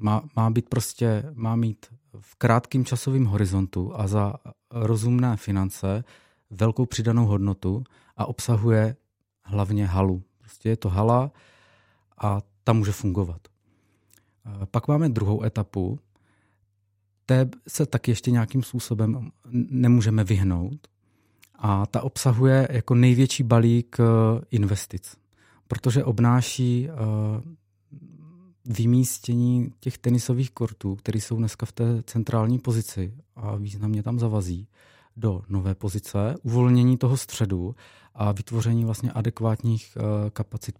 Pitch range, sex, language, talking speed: 105-125 Hz, male, Czech, 110 wpm